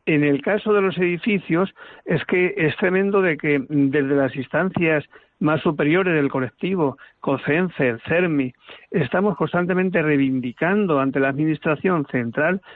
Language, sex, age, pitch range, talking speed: Spanish, male, 60-79, 145-190 Hz, 130 wpm